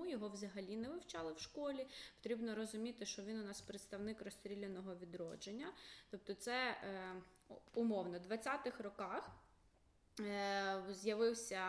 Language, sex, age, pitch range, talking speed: Ukrainian, female, 20-39, 195-250 Hz, 120 wpm